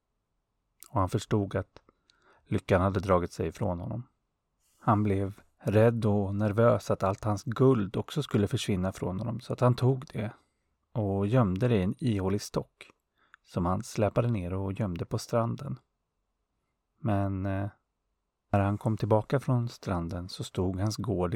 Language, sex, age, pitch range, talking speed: Swedish, male, 30-49, 95-115 Hz, 155 wpm